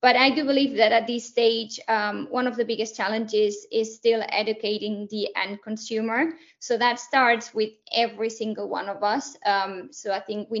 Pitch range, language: 205-235 Hz, Italian